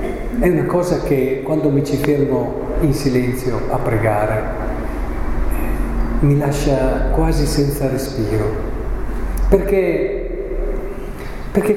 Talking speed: 95 wpm